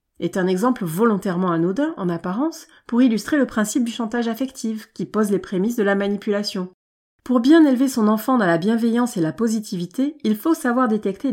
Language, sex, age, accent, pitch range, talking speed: French, female, 30-49, French, 180-255 Hz, 190 wpm